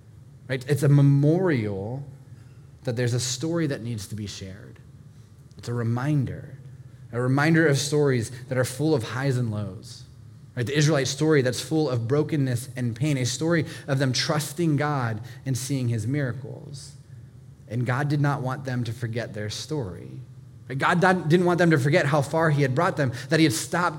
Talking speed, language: 185 wpm, English